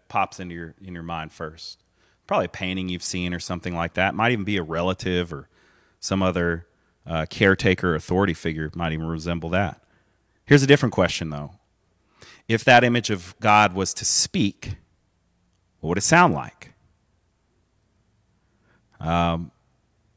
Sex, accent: male, American